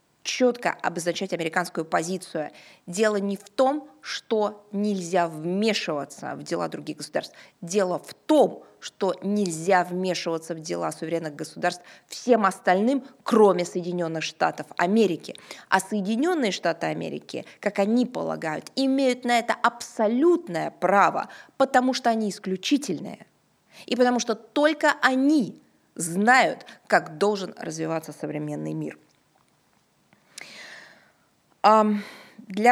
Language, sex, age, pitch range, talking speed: Russian, female, 20-39, 180-250 Hz, 110 wpm